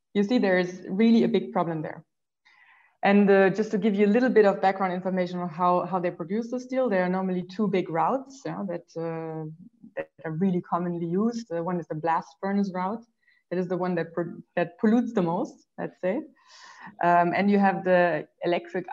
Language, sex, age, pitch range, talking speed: English, female, 20-39, 170-210 Hz, 210 wpm